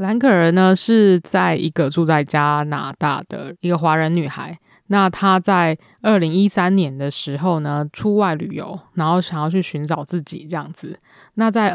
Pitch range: 155-185 Hz